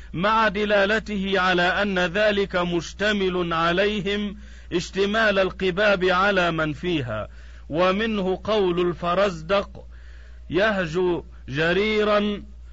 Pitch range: 170-200 Hz